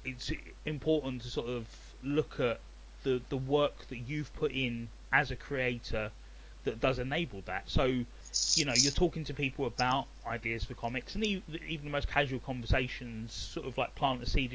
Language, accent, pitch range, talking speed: English, British, 110-140 Hz, 180 wpm